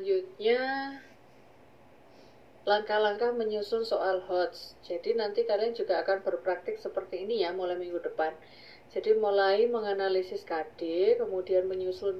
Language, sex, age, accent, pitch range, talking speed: Indonesian, female, 30-49, native, 190-250 Hz, 115 wpm